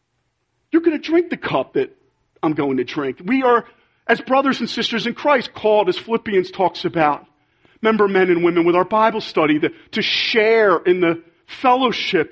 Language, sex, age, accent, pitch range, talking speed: English, male, 40-59, American, 150-210 Hz, 180 wpm